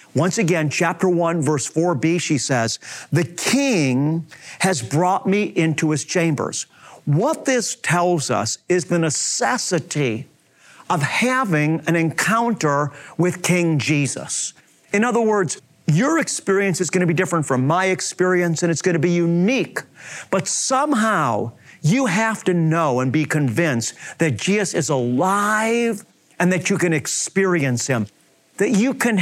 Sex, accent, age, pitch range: male, American, 50-69, 155-220 Hz